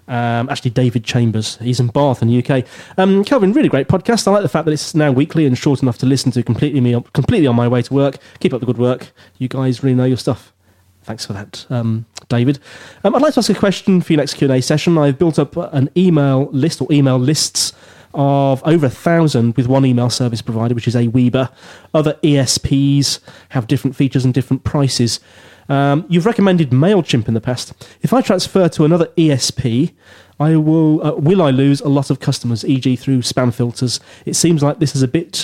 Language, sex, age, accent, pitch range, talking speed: English, male, 30-49, British, 125-150 Hz, 220 wpm